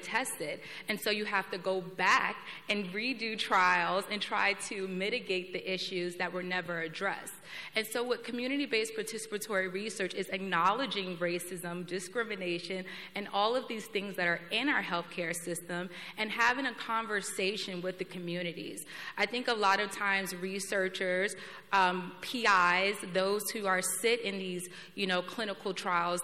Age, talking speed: 30-49, 155 wpm